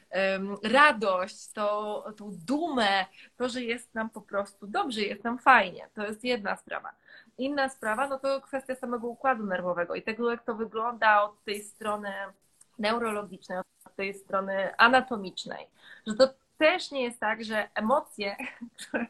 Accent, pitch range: native, 200-255 Hz